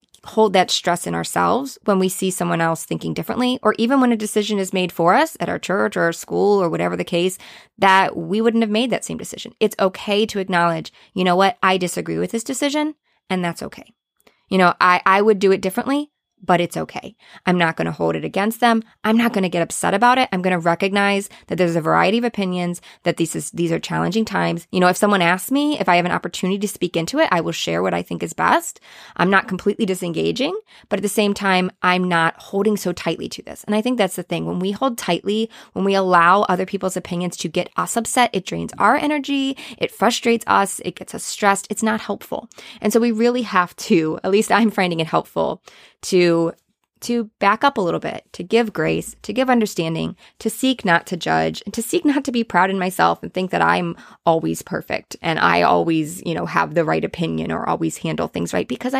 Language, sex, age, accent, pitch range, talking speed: English, female, 20-39, American, 170-225 Hz, 230 wpm